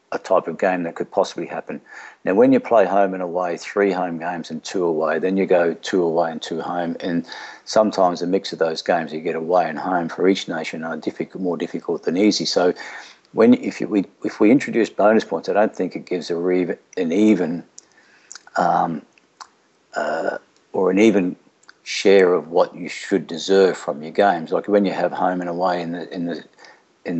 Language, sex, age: English, male, 50-69